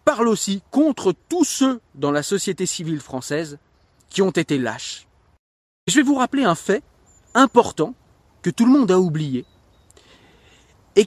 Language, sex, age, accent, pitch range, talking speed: French, male, 40-59, French, 140-225 Hz, 150 wpm